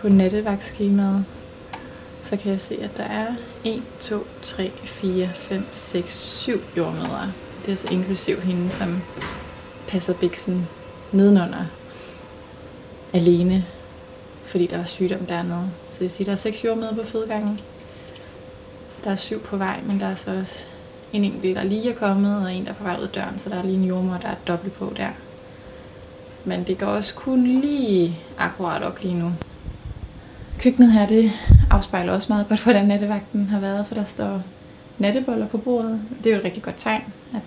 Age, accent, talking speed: 20-39, native, 180 wpm